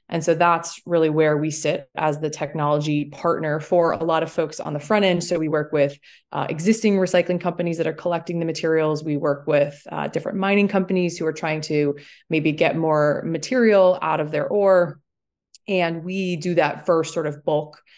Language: English